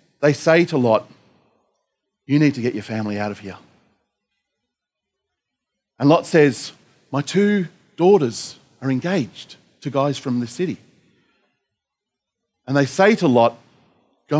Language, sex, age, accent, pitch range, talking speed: English, male, 40-59, Australian, 115-150 Hz, 135 wpm